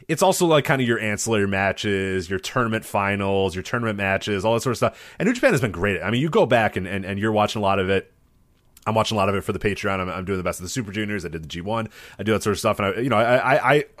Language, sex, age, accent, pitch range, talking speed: English, male, 30-49, American, 95-130 Hz, 315 wpm